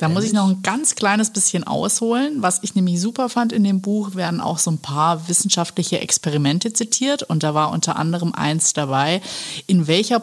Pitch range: 160-205 Hz